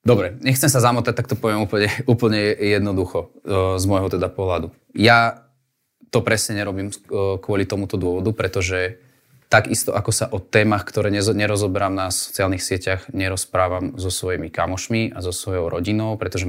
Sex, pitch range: male, 95-110 Hz